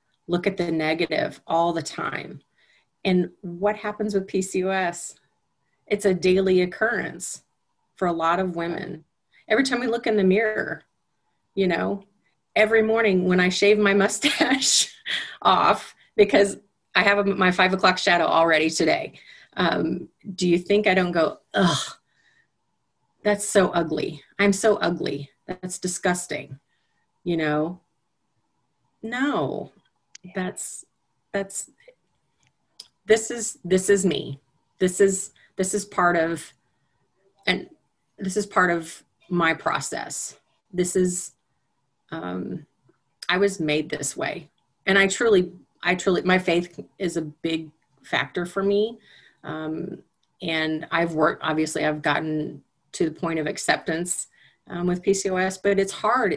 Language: English